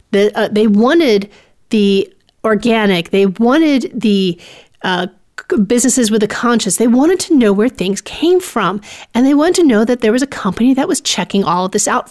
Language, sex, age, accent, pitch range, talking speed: English, female, 40-59, American, 200-255 Hz, 190 wpm